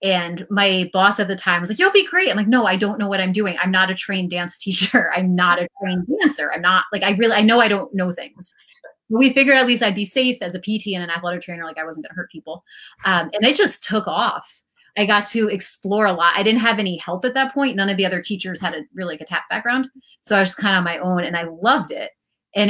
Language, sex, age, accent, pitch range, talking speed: English, female, 30-49, American, 180-215 Hz, 285 wpm